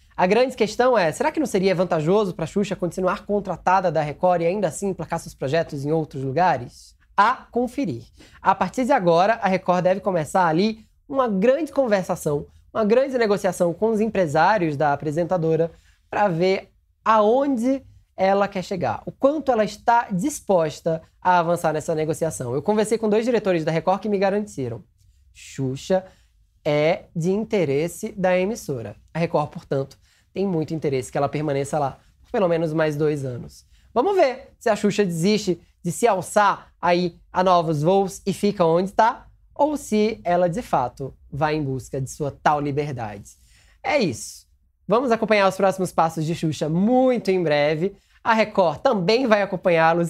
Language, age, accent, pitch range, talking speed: Portuguese, 20-39, Brazilian, 155-210 Hz, 170 wpm